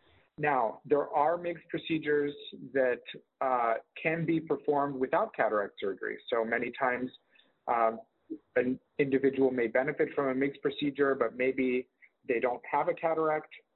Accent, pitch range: American, 120-160 Hz